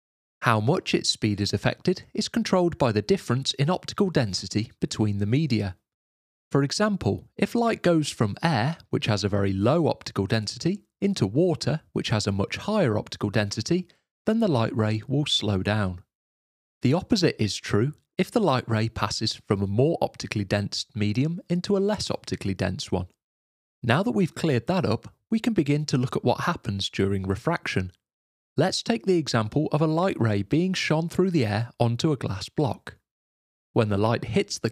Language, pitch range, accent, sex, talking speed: English, 100-170 Hz, British, male, 185 wpm